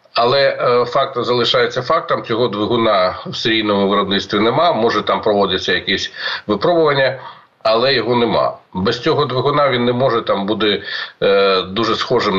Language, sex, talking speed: Ukrainian, male, 135 wpm